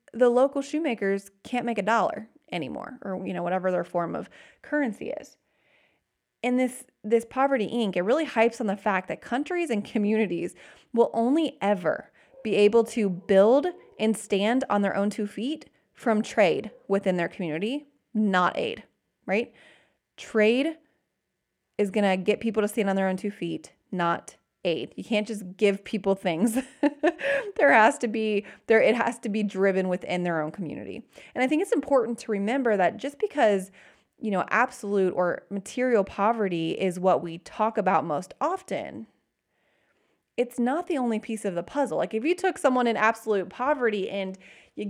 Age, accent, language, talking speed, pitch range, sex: 20-39, American, English, 170 wpm, 195-255 Hz, female